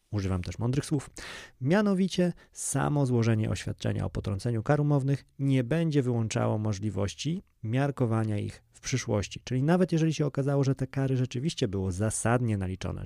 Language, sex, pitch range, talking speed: Polish, male, 105-135 Hz, 145 wpm